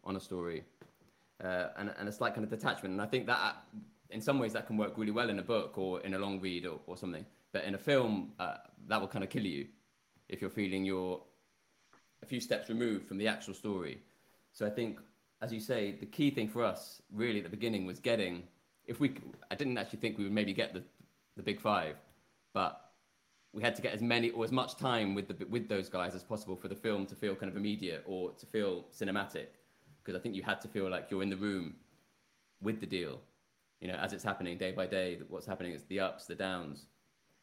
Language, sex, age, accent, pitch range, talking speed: English, male, 20-39, British, 95-110 Hz, 235 wpm